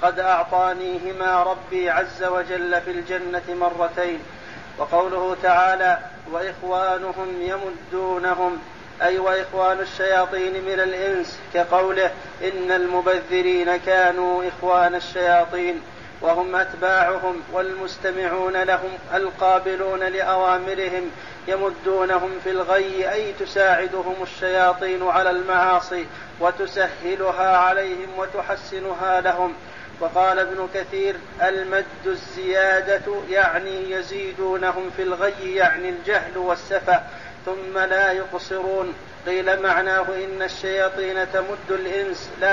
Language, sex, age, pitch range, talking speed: Arabic, male, 40-59, 180-190 Hz, 90 wpm